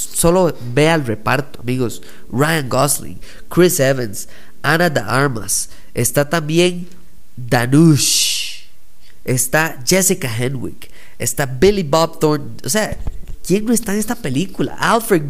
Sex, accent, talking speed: male, Mexican, 120 wpm